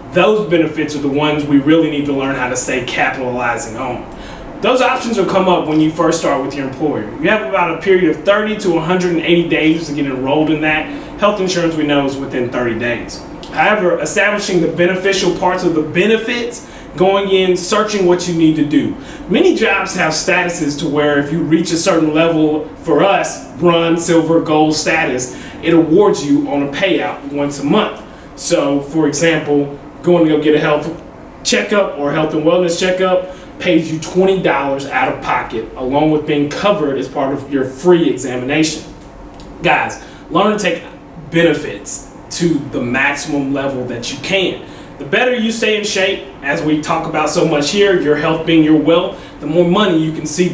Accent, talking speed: American, 190 wpm